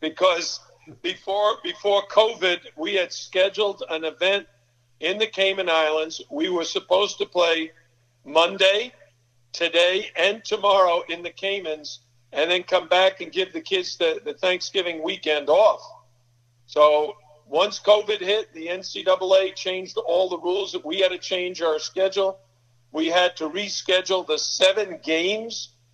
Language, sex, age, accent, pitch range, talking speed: English, male, 50-69, American, 155-195 Hz, 145 wpm